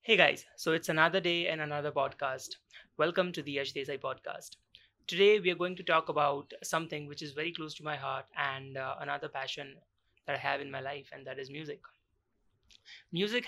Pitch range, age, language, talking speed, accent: 150-190 Hz, 20-39, English, 200 wpm, Indian